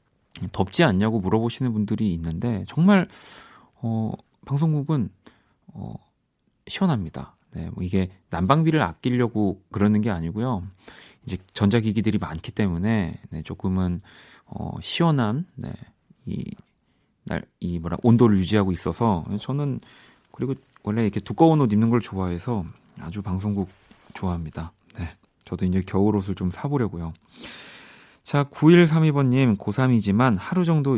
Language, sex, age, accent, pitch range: Korean, male, 40-59, native, 95-130 Hz